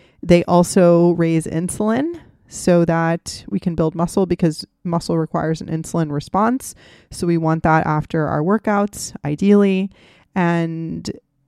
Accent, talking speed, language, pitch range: American, 130 wpm, English, 155-180 Hz